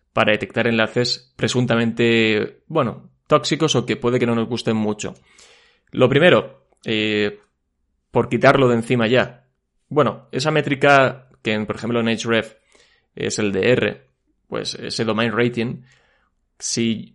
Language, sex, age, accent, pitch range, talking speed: Spanish, male, 20-39, Spanish, 110-130 Hz, 135 wpm